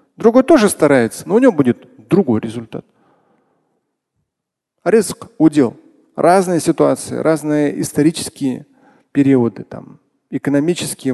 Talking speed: 95 wpm